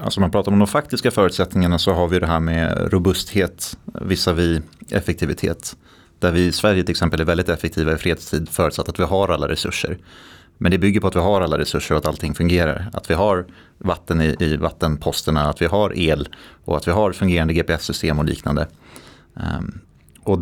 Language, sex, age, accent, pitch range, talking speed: Swedish, male, 30-49, native, 85-105 Hz, 205 wpm